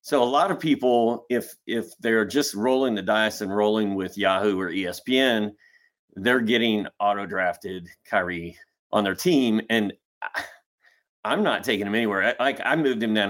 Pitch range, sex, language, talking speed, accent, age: 95-120 Hz, male, English, 175 wpm, American, 30-49